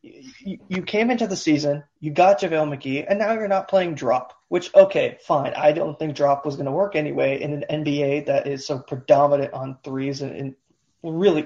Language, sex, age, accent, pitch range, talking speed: English, male, 20-39, American, 140-175 Hz, 205 wpm